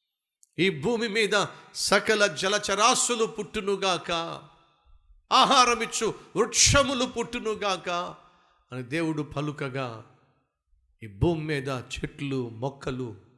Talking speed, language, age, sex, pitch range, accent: 65 wpm, Telugu, 50-69, male, 125-180 Hz, native